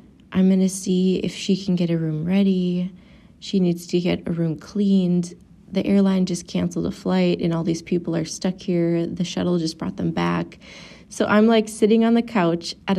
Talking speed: 210 wpm